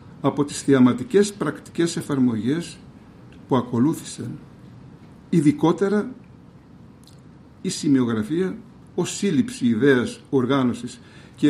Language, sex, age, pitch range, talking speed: Greek, male, 60-79, 130-185 Hz, 80 wpm